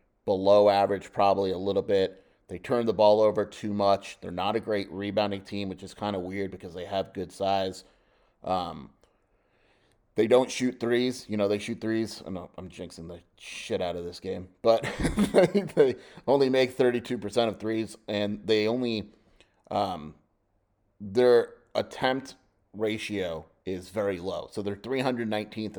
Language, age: English, 30-49